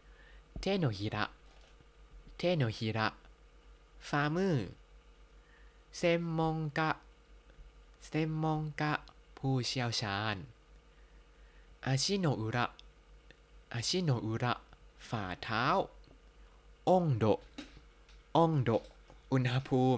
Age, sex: 20-39, male